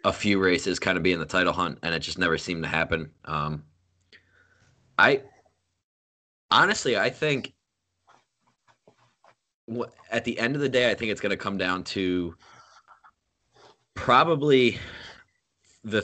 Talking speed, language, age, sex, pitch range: 145 wpm, English, 20-39, male, 85-100 Hz